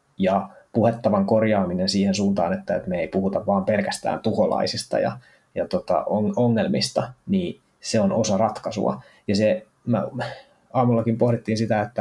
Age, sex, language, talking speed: 20-39, male, Finnish, 135 wpm